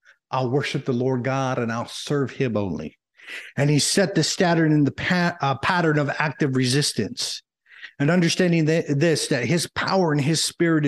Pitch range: 135-175 Hz